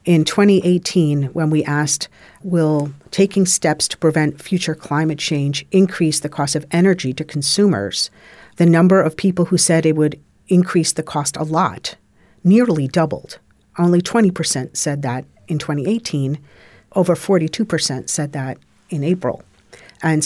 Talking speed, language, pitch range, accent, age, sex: 140 wpm, English, 150-180 Hz, American, 50-69, female